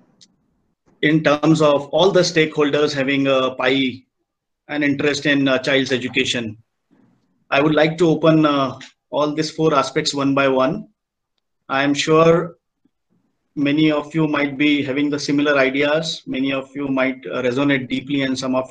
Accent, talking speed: Indian, 155 wpm